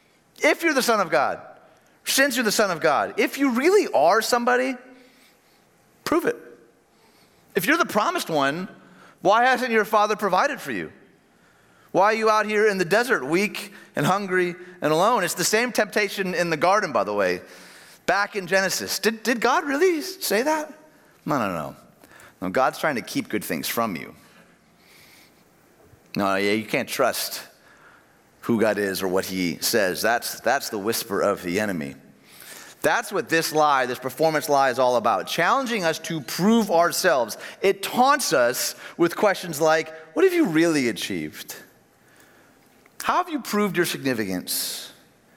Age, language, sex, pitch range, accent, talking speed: 30-49, English, male, 165-250 Hz, American, 165 wpm